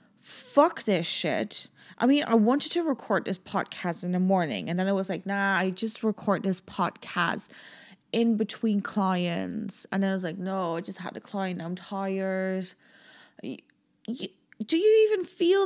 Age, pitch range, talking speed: 20-39, 190-235 Hz, 175 wpm